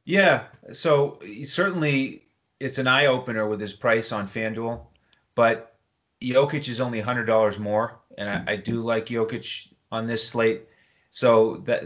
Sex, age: male, 30-49